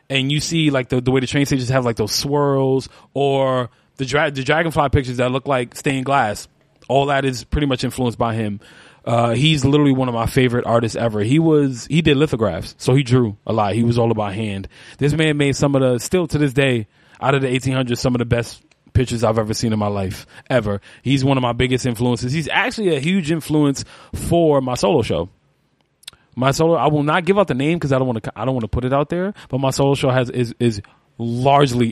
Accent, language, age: American, English, 20-39